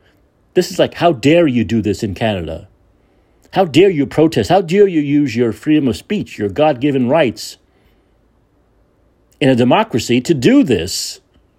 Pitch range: 95-140 Hz